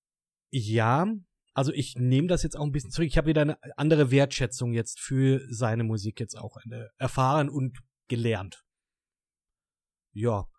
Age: 30-49